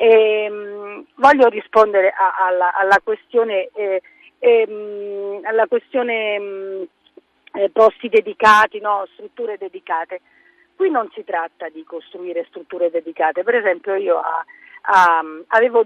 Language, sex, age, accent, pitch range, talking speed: Italian, female, 40-59, native, 200-285 Hz, 115 wpm